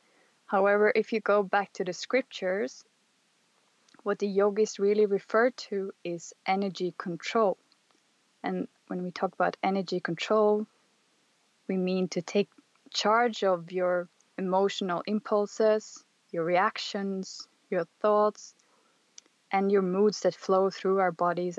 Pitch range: 180-215 Hz